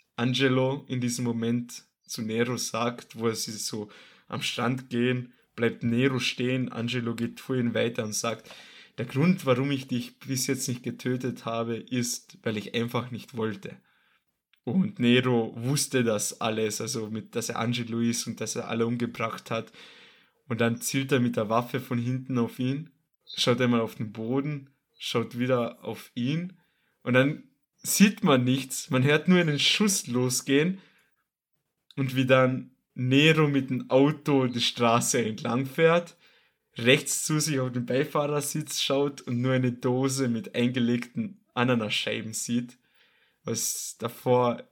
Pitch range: 115-135 Hz